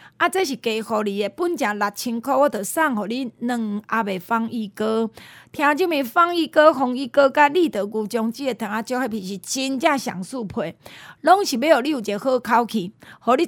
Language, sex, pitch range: Chinese, female, 215-290 Hz